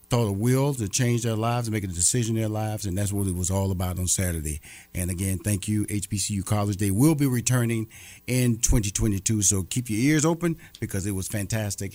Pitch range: 100-125 Hz